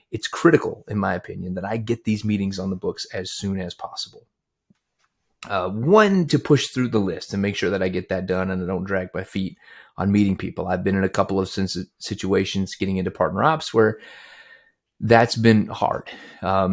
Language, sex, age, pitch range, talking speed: English, male, 30-49, 95-115 Hz, 205 wpm